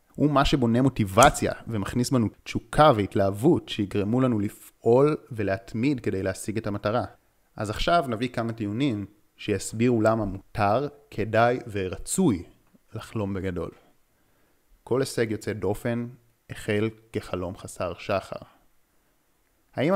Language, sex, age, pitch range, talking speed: Hebrew, male, 30-49, 100-125 Hz, 110 wpm